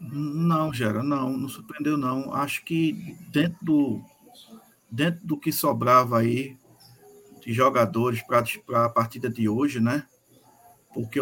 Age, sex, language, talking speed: 50-69, male, Portuguese, 125 wpm